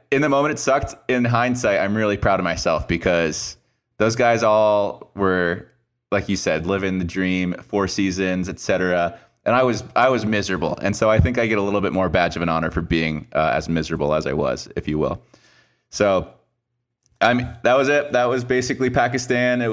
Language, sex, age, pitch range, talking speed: English, male, 20-39, 95-115 Hz, 210 wpm